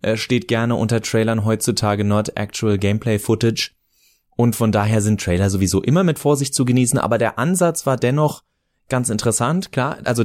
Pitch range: 105-135 Hz